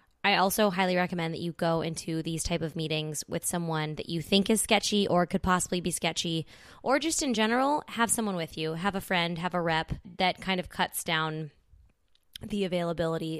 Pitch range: 160-210 Hz